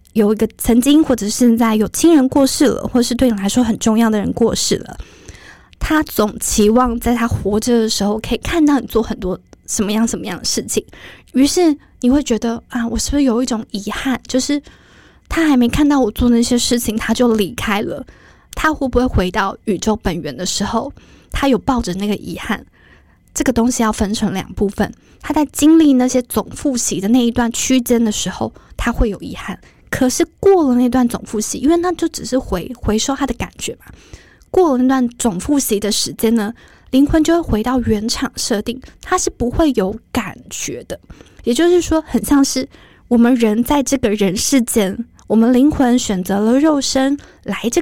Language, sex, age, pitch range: Chinese, female, 20-39, 220-275 Hz